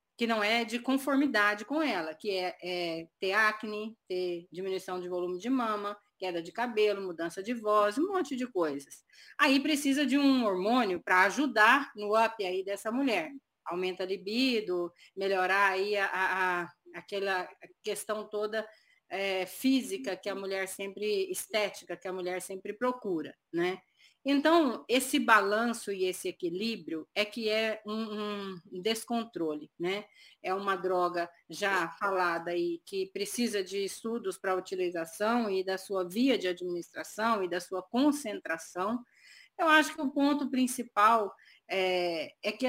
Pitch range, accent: 185-250 Hz, Brazilian